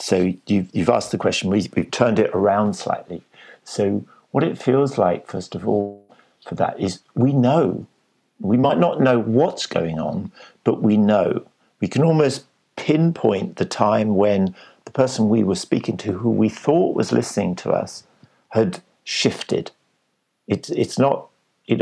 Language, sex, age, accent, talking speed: English, male, 50-69, British, 165 wpm